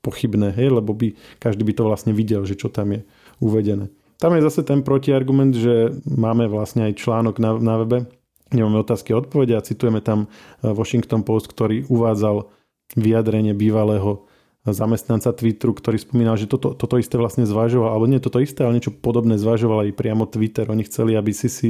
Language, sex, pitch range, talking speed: Slovak, male, 110-120 Hz, 180 wpm